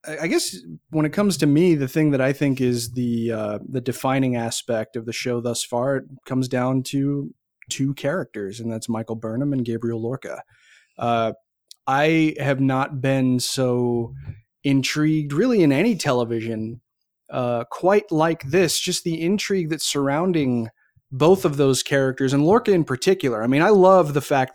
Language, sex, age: English, male, 30-49